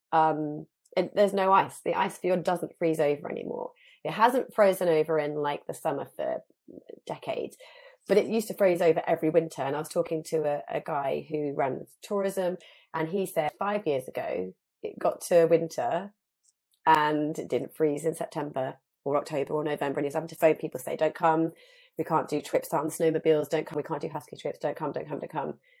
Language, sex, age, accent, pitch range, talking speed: English, female, 30-49, British, 155-190 Hz, 210 wpm